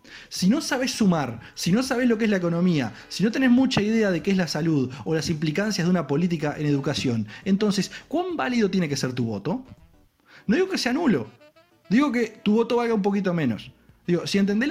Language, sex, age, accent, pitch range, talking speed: Spanish, male, 20-39, Argentinian, 145-210 Hz, 220 wpm